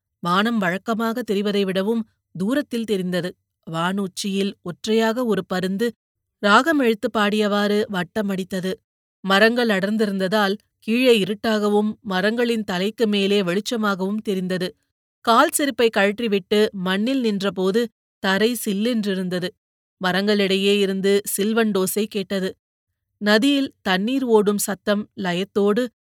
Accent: native